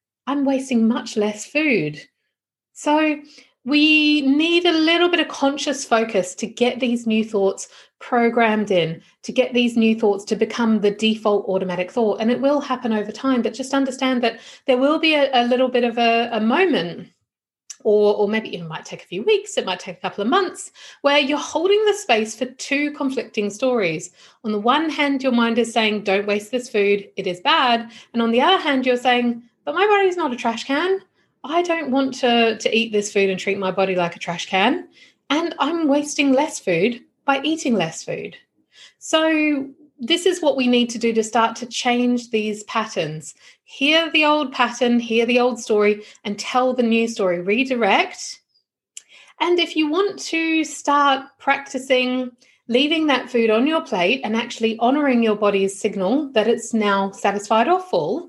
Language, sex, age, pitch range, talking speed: English, female, 40-59, 220-290 Hz, 190 wpm